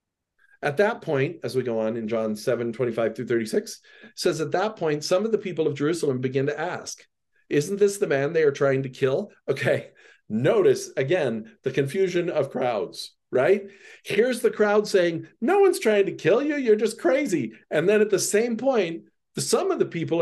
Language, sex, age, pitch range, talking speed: English, male, 50-69, 150-210 Hz, 190 wpm